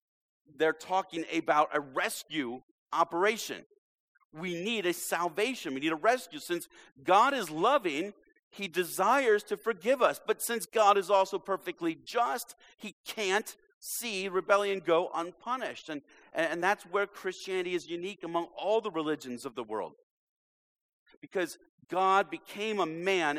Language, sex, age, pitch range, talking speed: English, male, 40-59, 160-220 Hz, 140 wpm